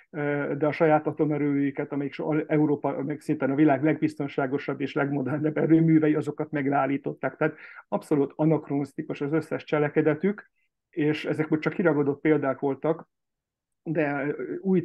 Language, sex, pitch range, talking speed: Hungarian, male, 140-155 Hz, 125 wpm